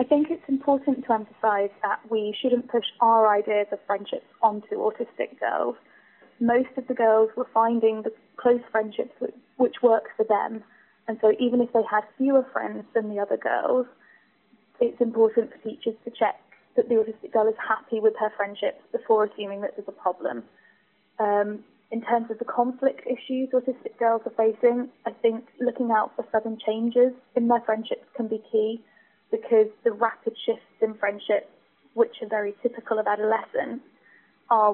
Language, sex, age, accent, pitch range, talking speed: English, female, 20-39, British, 215-245 Hz, 175 wpm